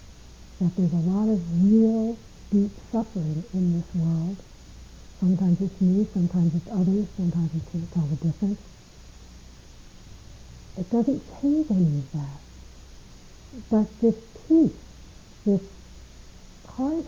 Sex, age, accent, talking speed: female, 60-79, American, 115 wpm